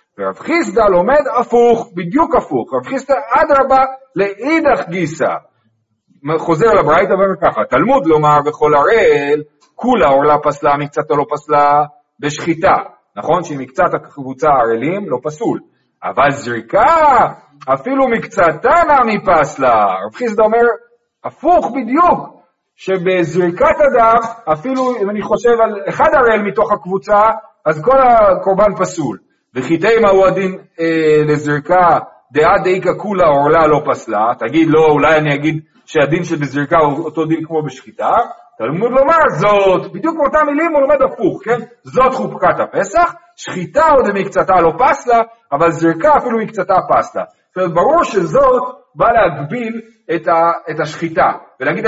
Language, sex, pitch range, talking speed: Hebrew, male, 155-235 Hz, 135 wpm